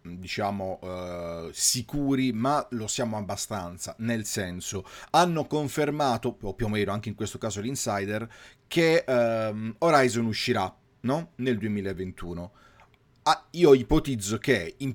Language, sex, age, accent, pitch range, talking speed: Italian, male, 30-49, native, 105-135 Hz, 110 wpm